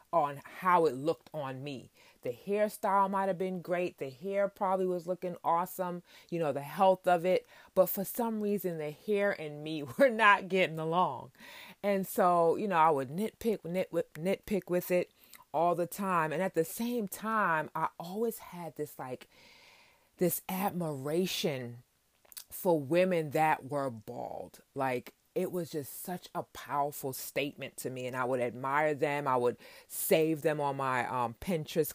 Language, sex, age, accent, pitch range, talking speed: English, female, 30-49, American, 145-190 Hz, 165 wpm